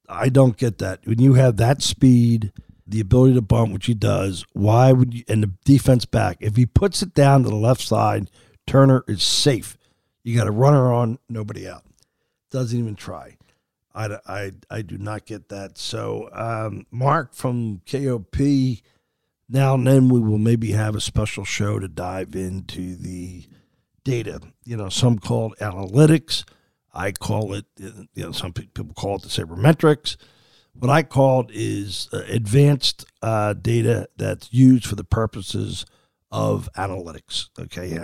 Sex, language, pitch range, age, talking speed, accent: male, English, 95-125 Hz, 50-69, 165 wpm, American